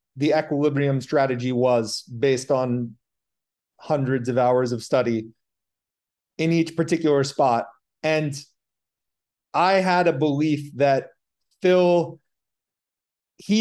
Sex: male